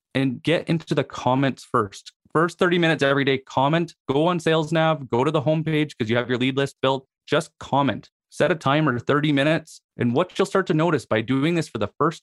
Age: 30-49